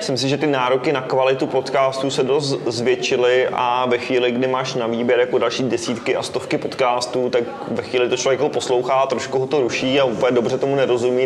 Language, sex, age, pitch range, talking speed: Czech, male, 20-39, 115-135 Hz, 215 wpm